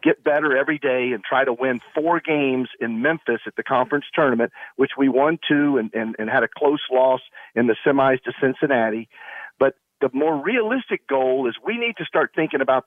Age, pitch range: 50-69, 125-150 Hz